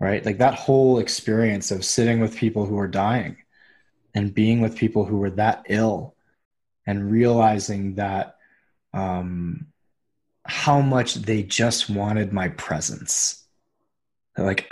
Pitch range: 105-125 Hz